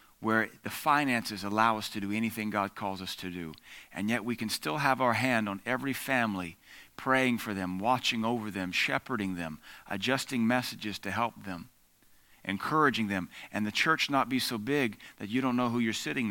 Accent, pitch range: American, 105-140 Hz